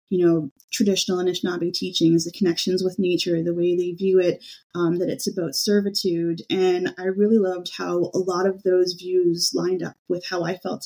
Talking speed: 195 wpm